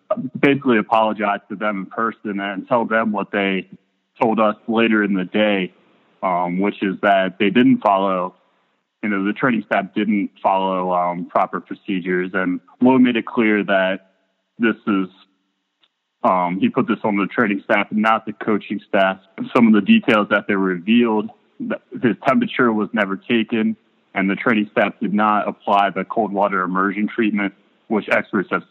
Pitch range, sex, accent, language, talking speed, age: 95-115 Hz, male, American, English, 175 wpm, 20-39